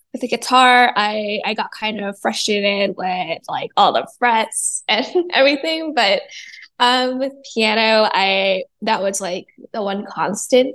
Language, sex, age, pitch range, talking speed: English, female, 10-29, 205-250 Hz, 150 wpm